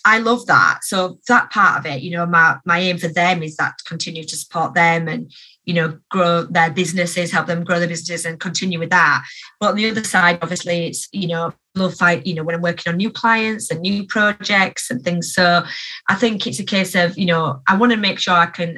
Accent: British